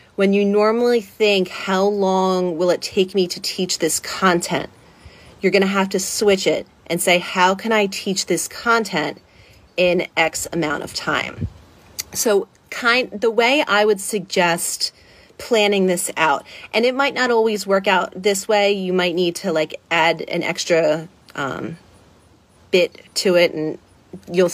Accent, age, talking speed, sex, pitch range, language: American, 30-49, 165 wpm, female, 165-195 Hz, English